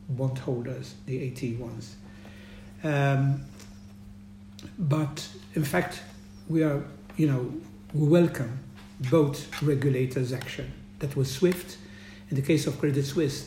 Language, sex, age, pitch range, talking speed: English, male, 60-79, 125-155 Hz, 115 wpm